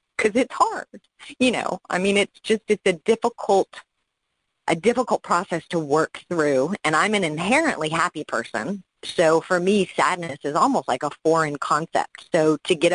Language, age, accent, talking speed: English, 40-59, American, 170 wpm